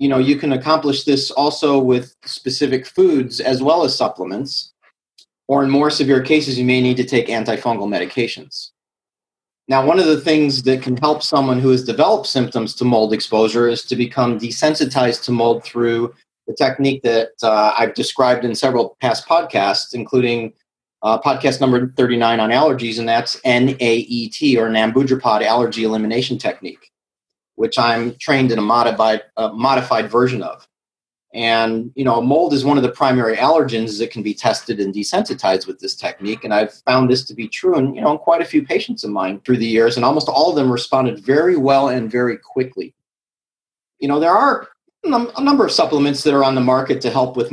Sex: male